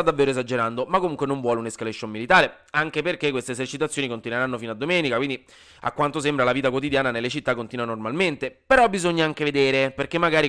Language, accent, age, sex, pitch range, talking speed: Italian, native, 20-39, male, 125-165 Hz, 190 wpm